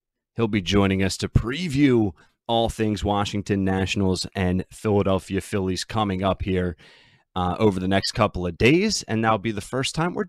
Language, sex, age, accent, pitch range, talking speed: English, male, 30-49, American, 90-110 Hz, 175 wpm